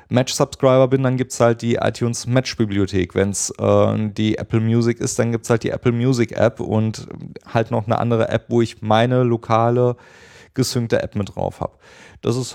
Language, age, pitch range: German, 30-49, 100-120 Hz